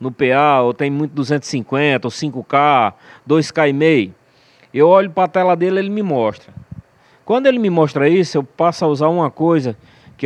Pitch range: 130-170 Hz